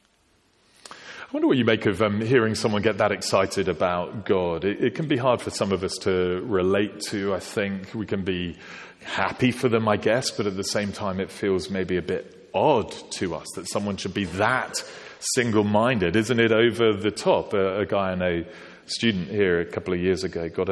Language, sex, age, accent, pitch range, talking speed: English, male, 30-49, British, 90-110 Hz, 210 wpm